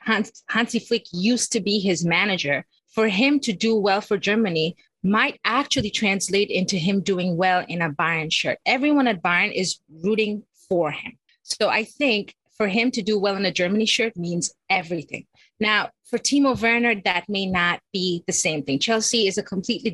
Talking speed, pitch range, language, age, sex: 185 wpm, 185-230 Hz, English, 30-49, female